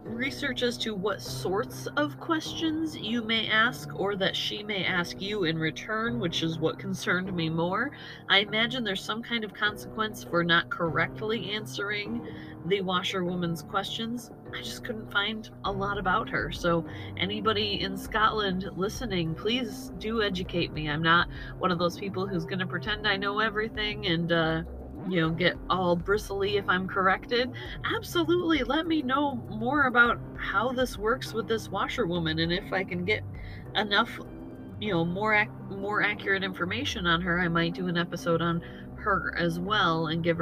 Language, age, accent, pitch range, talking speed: English, 30-49, American, 160-205 Hz, 170 wpm